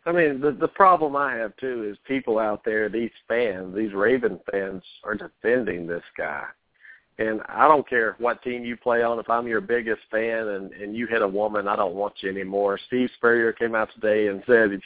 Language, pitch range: English, 105-120 Hz